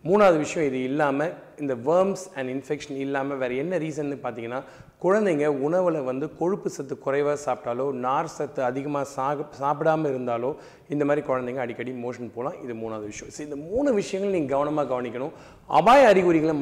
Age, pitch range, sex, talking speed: 30-49, 130-160 Hz, male, 155 wpm